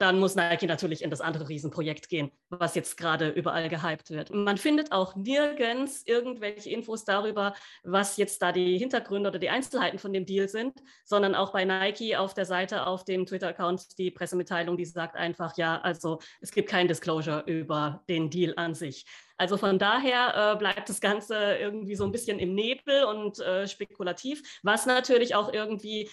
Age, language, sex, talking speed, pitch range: 20-39, German, female, 185 wpm, 180-225 Hz